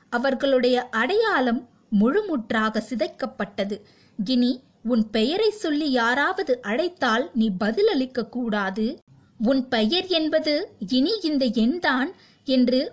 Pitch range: 225-300 Hz